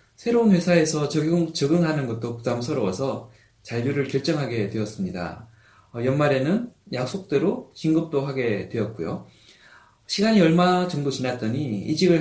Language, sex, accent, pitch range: Korean, male, native, 120-165 Hz